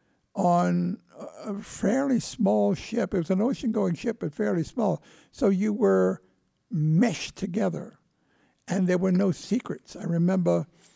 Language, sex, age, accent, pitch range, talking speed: English, male, 60-79, American, 170-205 Hz, 140 wpm